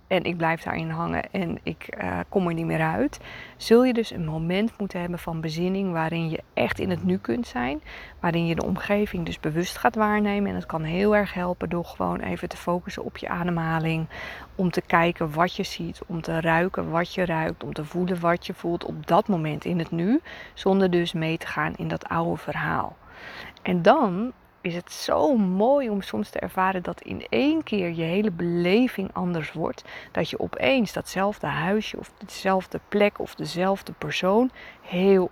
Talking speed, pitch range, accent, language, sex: 195 wpm, 170-205 Hz, Dutch, Dutch, female